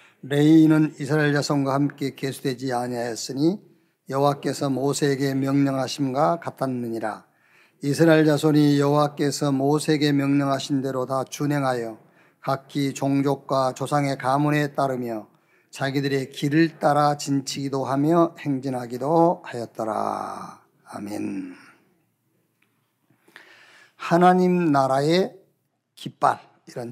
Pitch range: 130-155 Hz